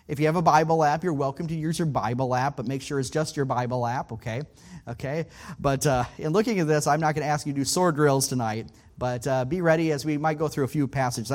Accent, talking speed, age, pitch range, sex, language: American, 275 wpm, 30-49, 130-165 Hz, male, English